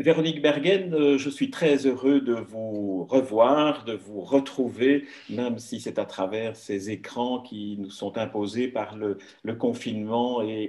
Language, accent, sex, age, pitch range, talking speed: French, French, male, 50-69, 110-140 Hz, 155 wpm